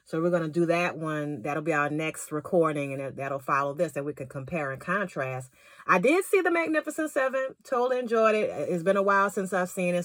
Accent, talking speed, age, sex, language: American, 235 wpm, 30-49, female, English